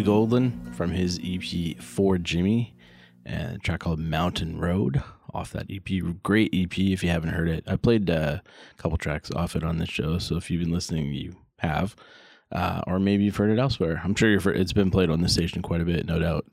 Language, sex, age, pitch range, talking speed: English, male, 20-39, 80-100 Hz, 220 wpm